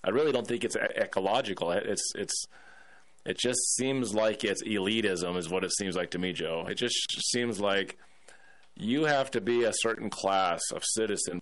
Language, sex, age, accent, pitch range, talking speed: English, male, 30-49, American, 95-120 Hz, 185 wpm